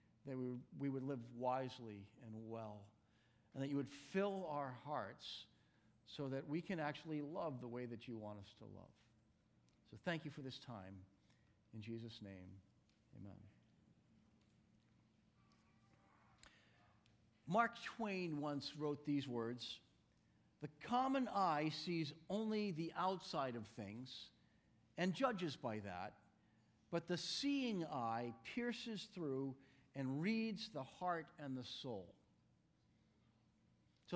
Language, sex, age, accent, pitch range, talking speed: English, male, 50-69, American, 115-180 Hz, 125 wpm